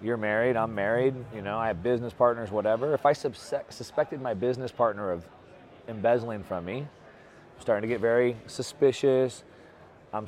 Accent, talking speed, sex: American, 165 wpm, male